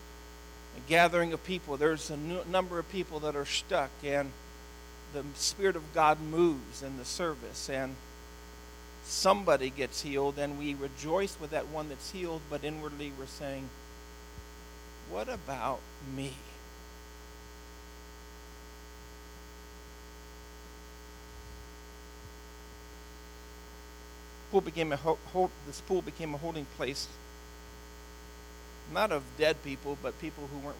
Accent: American